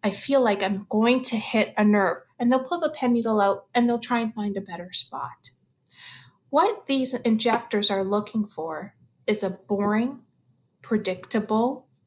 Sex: female